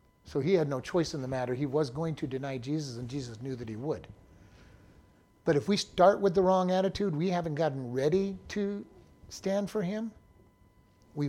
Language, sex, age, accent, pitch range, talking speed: English, male, 50-69, American, 140-170 Hz, 195 wpm